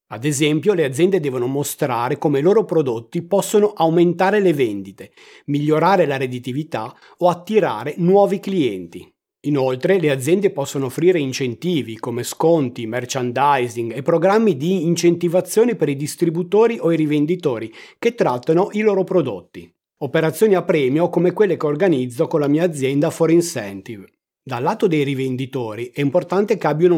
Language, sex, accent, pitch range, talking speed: Italian, male, native, 135-180 Hz, 145 wpm